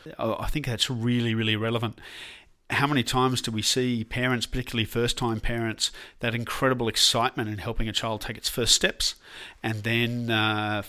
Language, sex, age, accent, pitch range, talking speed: English, male, 40-59, Australian, 110-130 Hz, 165 wpm